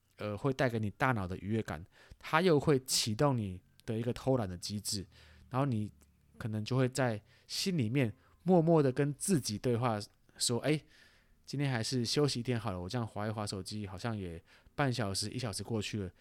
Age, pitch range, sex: 20-39, 105-130 Hz, male